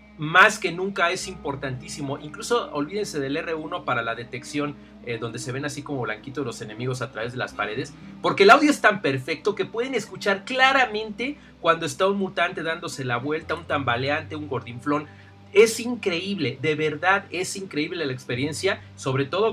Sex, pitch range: male, 140-190 Hz